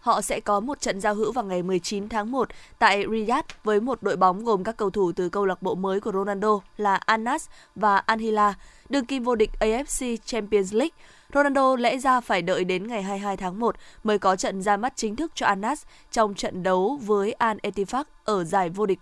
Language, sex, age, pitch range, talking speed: Vietnamese, female, 20-39, 195-240 Hz, 220 wpm